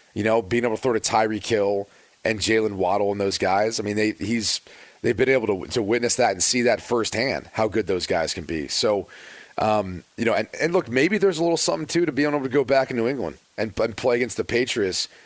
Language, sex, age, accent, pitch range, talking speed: English, male, 30-49, American, 110-130 Hz, 260 wpm